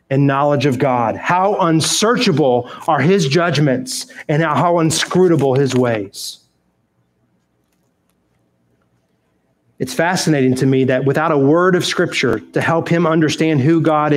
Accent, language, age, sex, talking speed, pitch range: American, English, 30-49, male, 130 wpm, 125-170 Hz